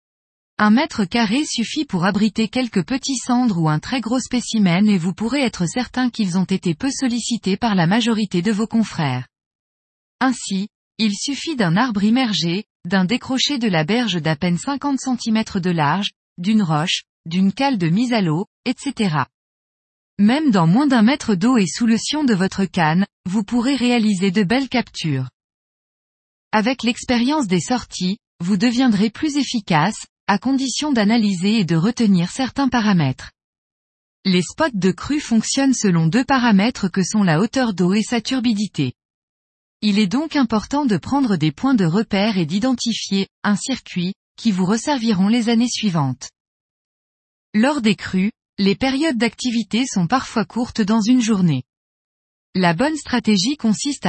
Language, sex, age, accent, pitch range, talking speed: French, female, 20-39, French, 180-245 Hz, 160 wpm